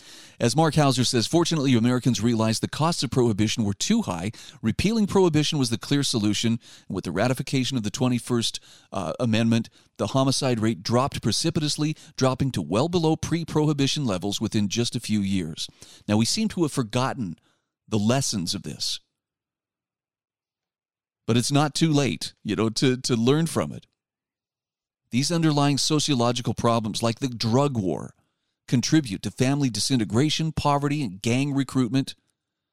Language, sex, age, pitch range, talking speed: English, male, 40-59, 110-150 Hz, 150 wpm